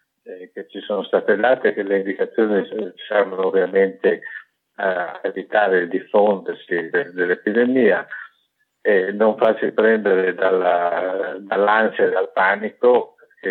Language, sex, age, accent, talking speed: Italian, male, 50-69, native, 110 wpm